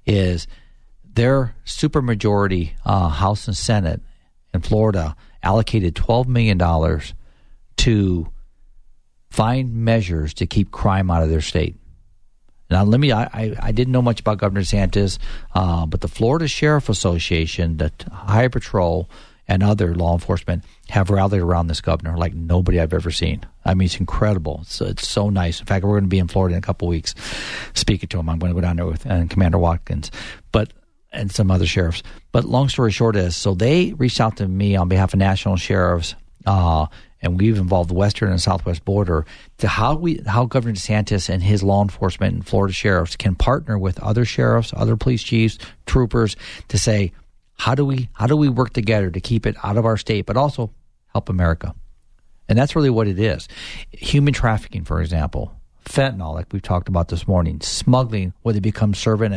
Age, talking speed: 50-69, 185 wpm